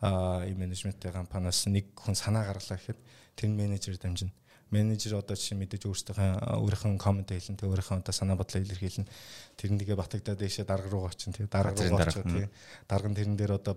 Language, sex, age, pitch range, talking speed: English, male, 20-39, 95-115 Hz, 160 wpm